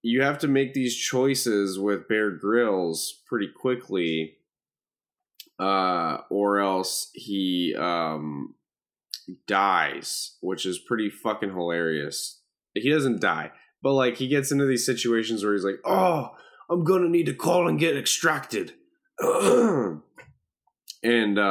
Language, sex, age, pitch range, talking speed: English, male, 10-29, 100-140 Hz, 130 wpm